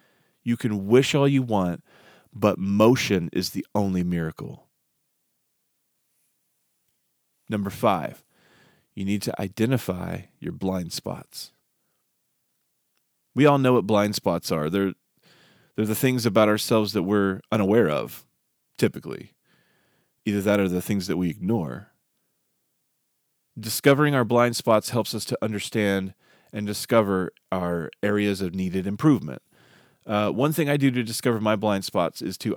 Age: 30-49